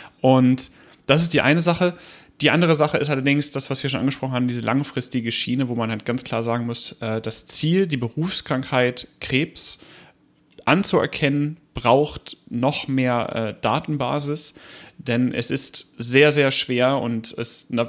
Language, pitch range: German, 115-130 Hz